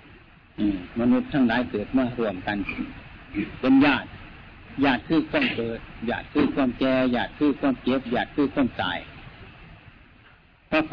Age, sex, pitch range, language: 60-79, male, 110-150 Hz, Thai